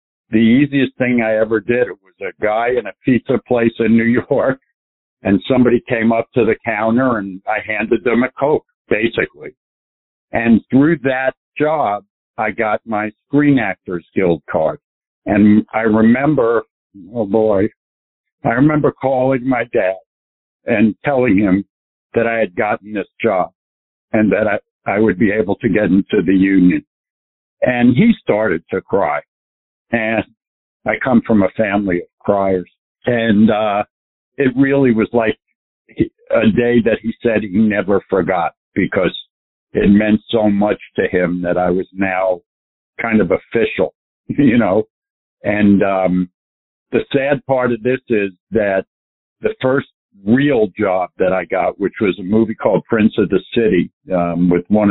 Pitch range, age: 90-125 Hz, 60-79